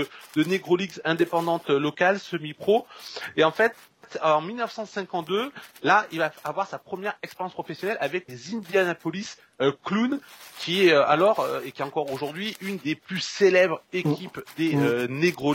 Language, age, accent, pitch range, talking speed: French, 30-49, French, 150-205 Hz, 160 wpm